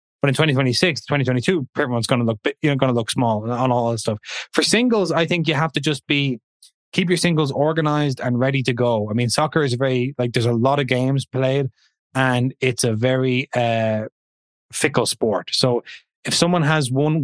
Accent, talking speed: Irish, 205 wpm